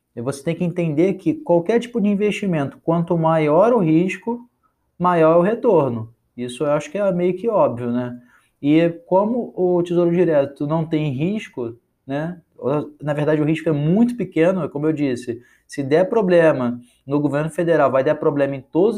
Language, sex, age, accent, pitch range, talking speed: Portuguese, male, 20-39, Brazilian, 140-185 Hz, 175 wpm